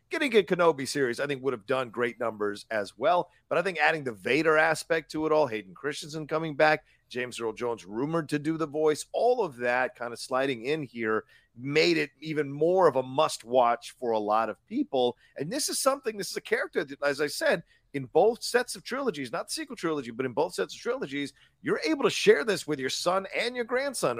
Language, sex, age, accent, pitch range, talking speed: English, male, 40-59, American, 120-170 Hz, 230 wpm